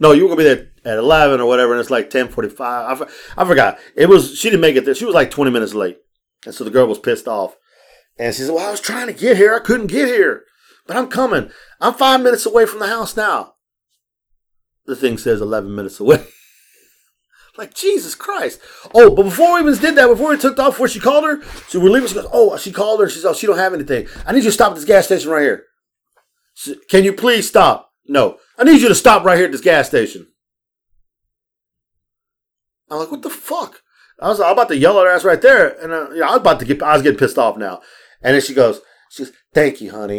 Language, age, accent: English, 40-59, American